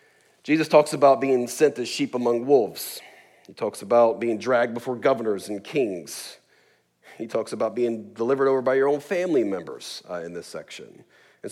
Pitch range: 105-145 Hz